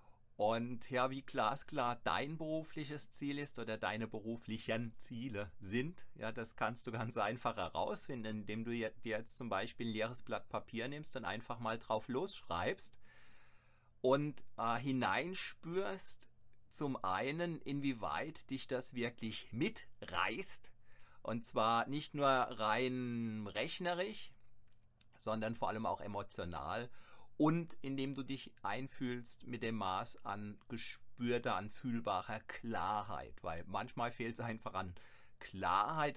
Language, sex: German, male